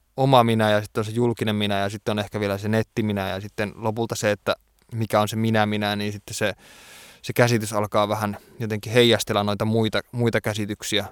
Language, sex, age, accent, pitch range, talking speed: Finnish, male, 20-39, native, 105-115 Hz, 210 wpm